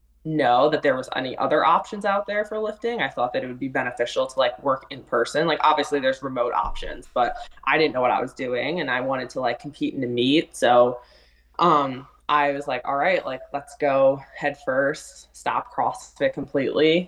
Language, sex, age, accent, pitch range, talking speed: English, female, 20-39, American, 125-150 Hz, 210 wpm